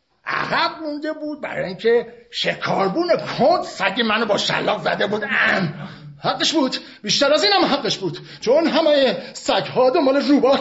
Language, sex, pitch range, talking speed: Persian, male, 210-325 Hz, 155 wpm